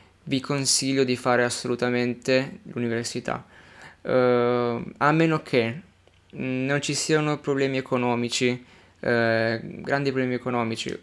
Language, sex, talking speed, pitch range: Italian, male, 110 wpm, 120-135 Hz